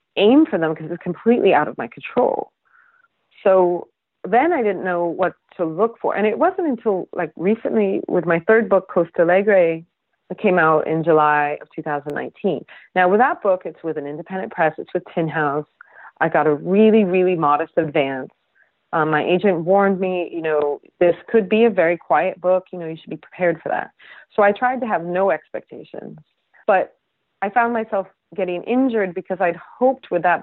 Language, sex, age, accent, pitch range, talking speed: English, female, 30-49, American, 160-200 Hz, 195 wpm